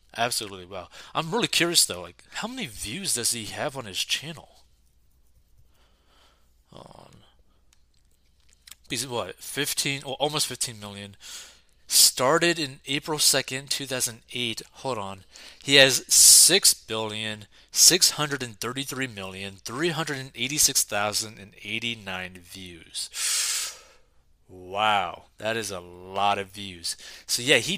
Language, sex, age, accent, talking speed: English, male, 30-49, American, 135 wpm